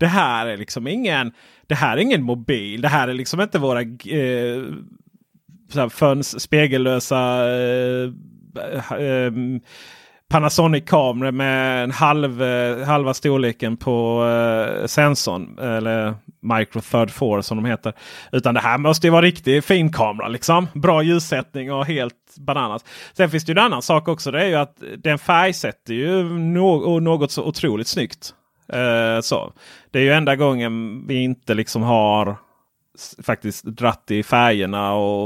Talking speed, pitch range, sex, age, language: 155 wpm, 110-145 Hz, male, 30-49, Swedish